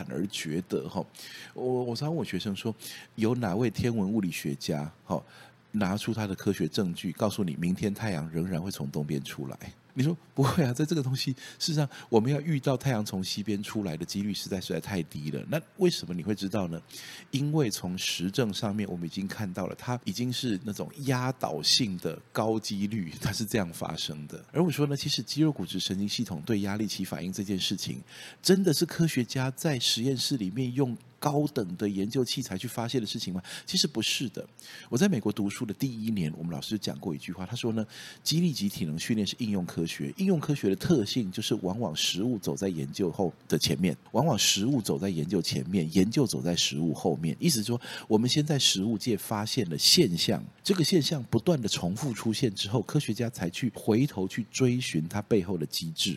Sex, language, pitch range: male, Chinese, 100-145 Hz